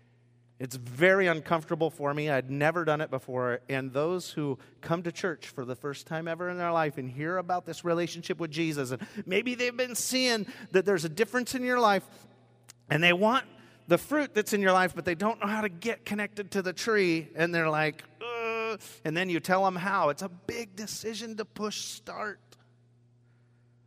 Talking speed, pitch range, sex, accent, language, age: 200 wpm, 120-175 Hz, male, American, English, 40-59